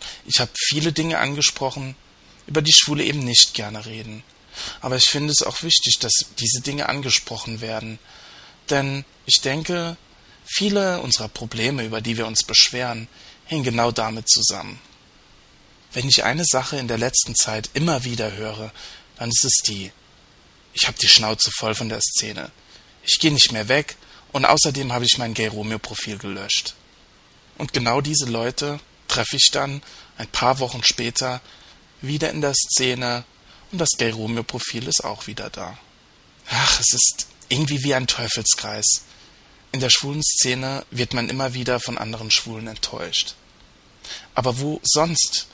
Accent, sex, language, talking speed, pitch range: German, male, German, 155 wpm, 110-135 Hz